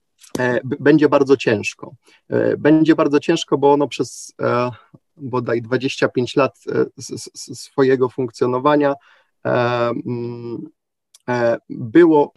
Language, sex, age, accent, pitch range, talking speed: Polish, male, 30-49, native, 115-140 Hz, 75 wpm